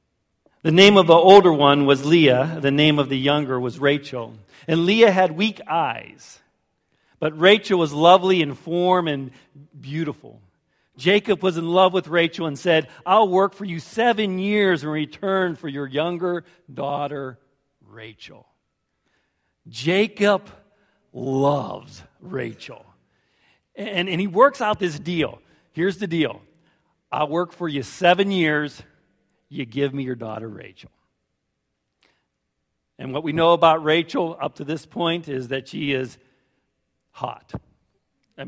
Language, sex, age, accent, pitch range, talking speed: English, male, 50-69, American, 135-180 Hz, 140 wpm